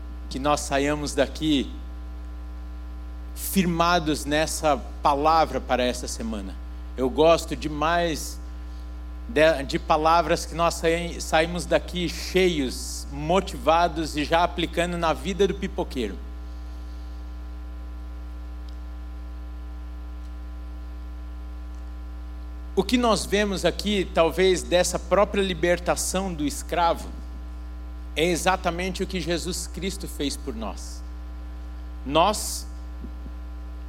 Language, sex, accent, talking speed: Portuguese, male, Brazilian, 90 wpm